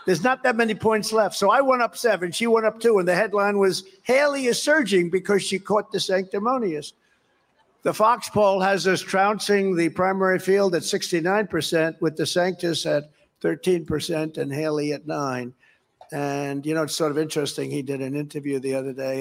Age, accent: 60-79, American